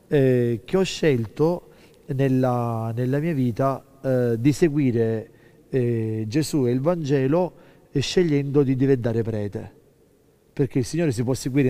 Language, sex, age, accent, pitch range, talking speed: Italian, male, 40-59, native, 125-150 Hz, 140 wpm